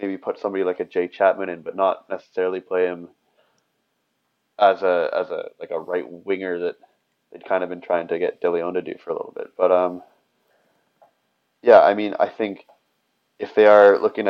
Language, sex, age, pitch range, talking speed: English, male, 20-39, 95-110 Hz, 195 wpm